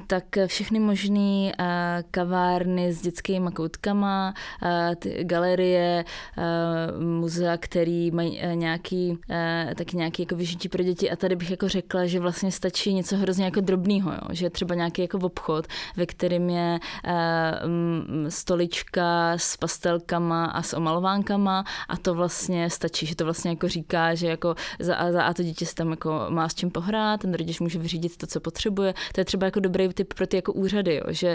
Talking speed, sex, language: 155 wpm, female, English